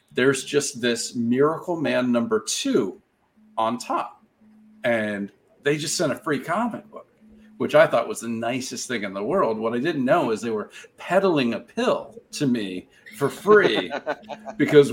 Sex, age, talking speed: male, 40-59, 170 wpm